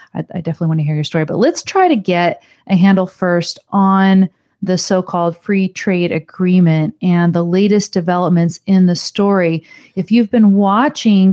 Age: 40-59